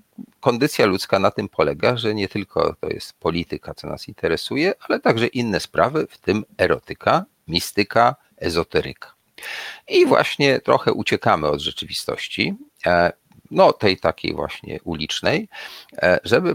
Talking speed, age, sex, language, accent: 125 wpm, 40-59, male, Polish, native